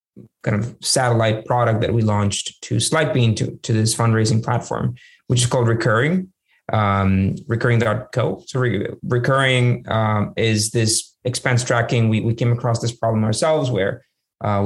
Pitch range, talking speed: 110-130 Hz, 145 wpm